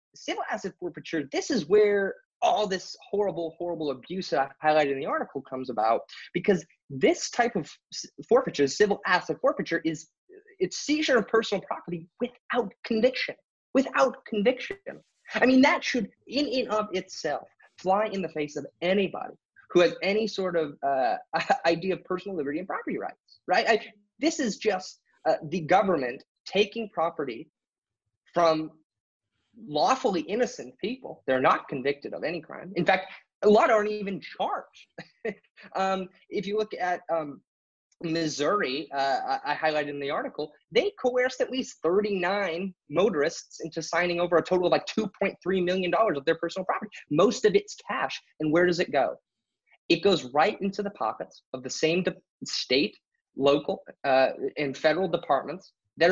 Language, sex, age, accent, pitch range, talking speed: English, male, 20-39, American, 165-225 Hz, 160 wpm